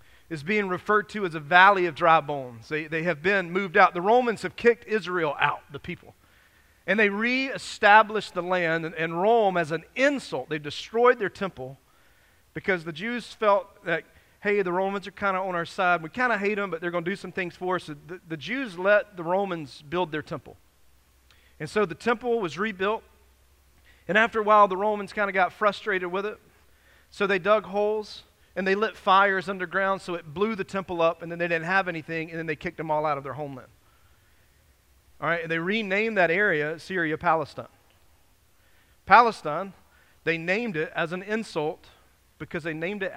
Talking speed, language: 200 wpm, English